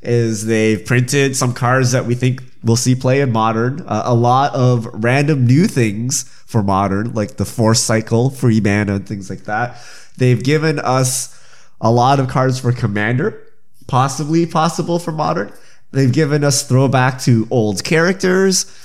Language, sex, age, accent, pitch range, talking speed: English, male, 20-39, American, 110-135 Hz, 165 wpm